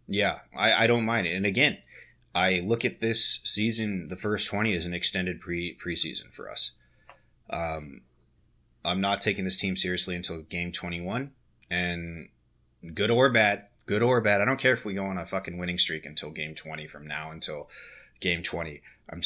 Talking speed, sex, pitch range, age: 190 wpm, male, 85-100 Hz, 30-49